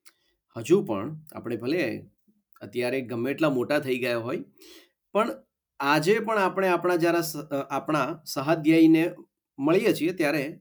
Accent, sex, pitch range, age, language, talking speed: native, male, 135-190 Hz, 40-59, Gujarati, 75 wpm